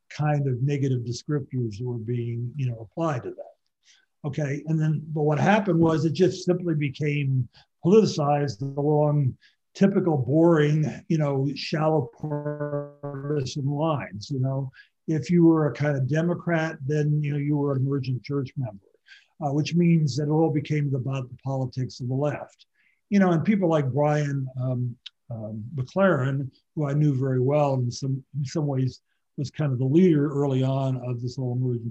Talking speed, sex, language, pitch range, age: 175 wpm, male, English, 130-155 Hz, 60-79